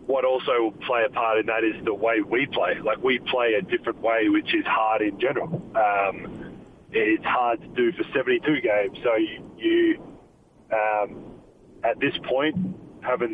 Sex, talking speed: male, 175 wpm